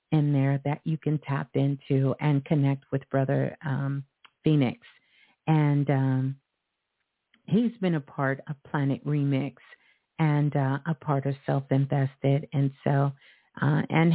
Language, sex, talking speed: English, female, 140 wpm